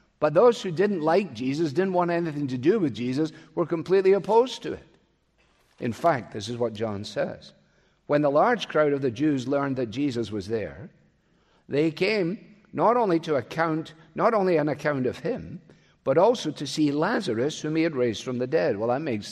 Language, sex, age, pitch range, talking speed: English, male, 50-69, 130-185 Hz, 195 wpm